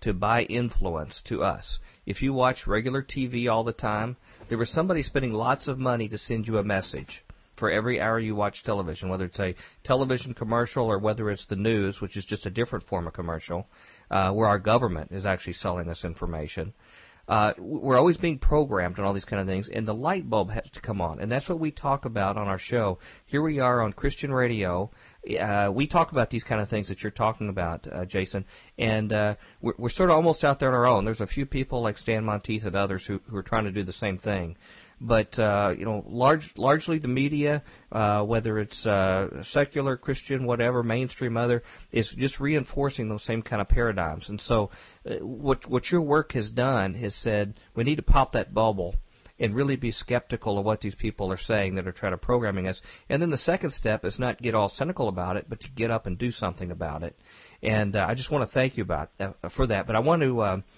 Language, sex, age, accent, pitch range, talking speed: English, male, 40-59, American, 100-125 Hz, 230 wpm